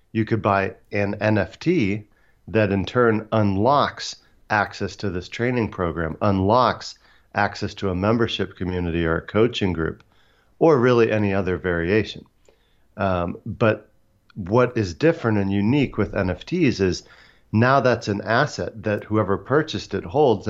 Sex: male